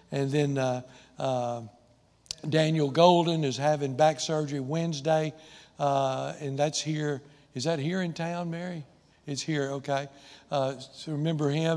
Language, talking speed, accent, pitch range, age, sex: English, 145 wpm, American, 135-155 Hz, 60-79, male